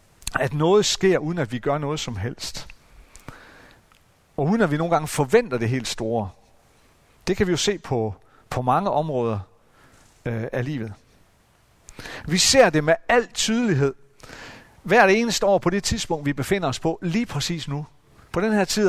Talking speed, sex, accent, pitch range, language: 180 wpm, male, native, 120-180 Hz, Danish